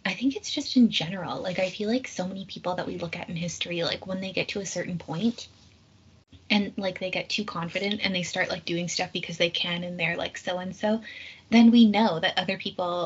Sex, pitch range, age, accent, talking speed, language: female, 175-205 Hz, 20-39, American, 240 wpm, English